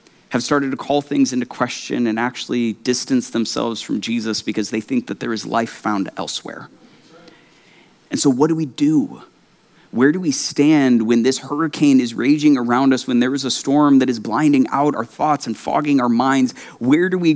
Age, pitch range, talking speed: 30-49, 110-155 Hz, 195 wpm